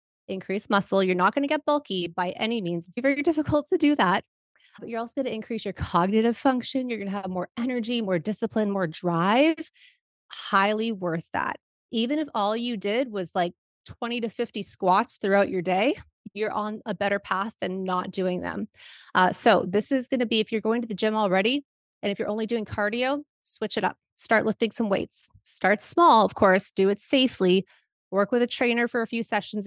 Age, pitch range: 30-49, 190-240 Hz